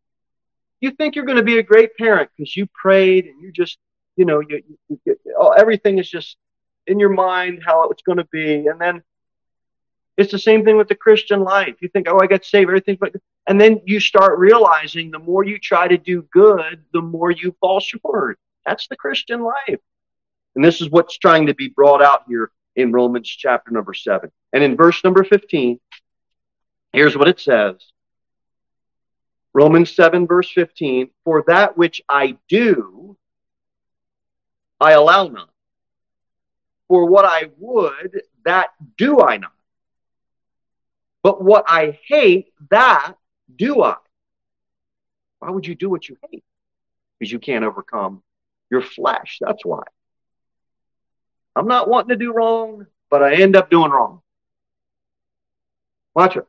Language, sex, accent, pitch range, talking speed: English, male, American, 155-205 Hz, 160 wpm